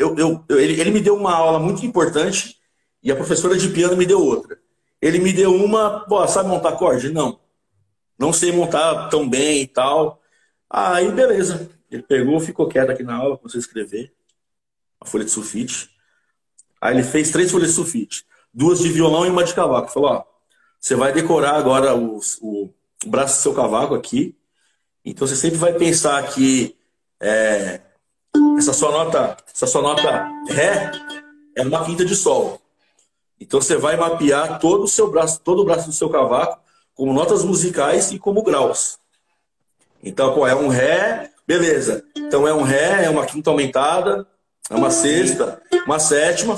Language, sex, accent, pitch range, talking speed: Portuguese, male, Brazilian, 145-200 Hz, 175 wpm